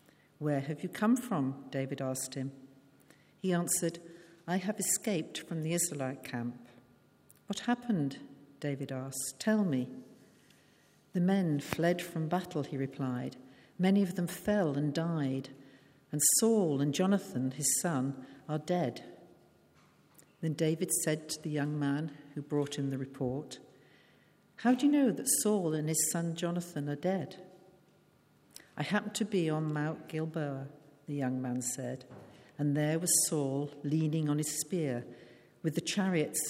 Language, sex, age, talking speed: English, female, 60-79, 150 wpm